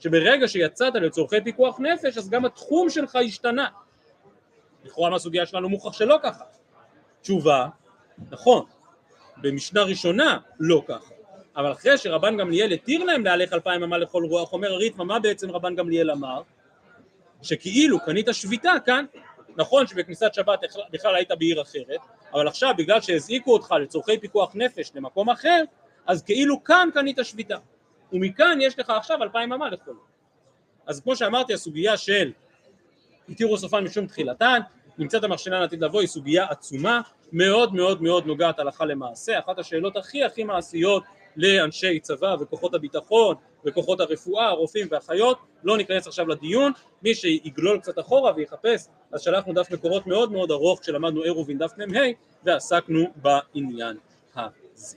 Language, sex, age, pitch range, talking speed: Hebrew, male, 30-49, 170-240 Hz, 140 wpm